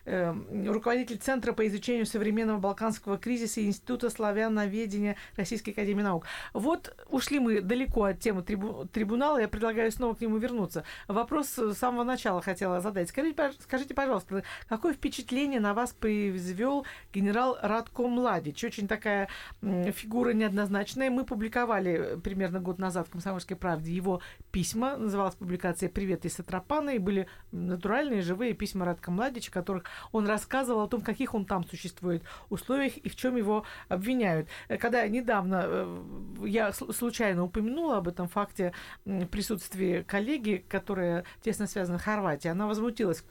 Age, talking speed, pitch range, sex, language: 50-69, 140 wpm, 195-240 Hz, female, Russian